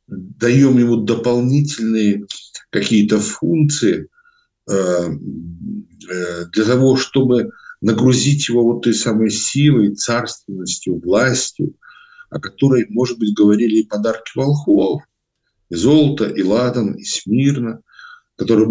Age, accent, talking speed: 60-79, native, 100 wpm